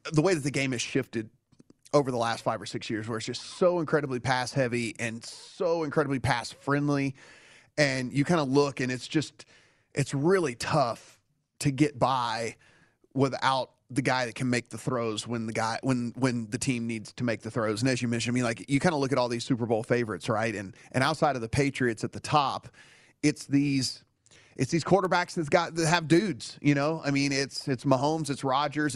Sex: male